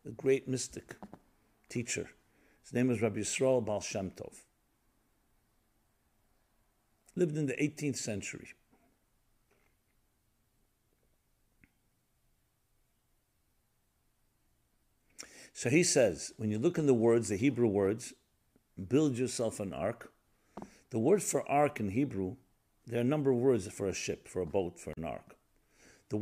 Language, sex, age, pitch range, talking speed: English, male, 50-69, 105-135 Hz, 125 wpm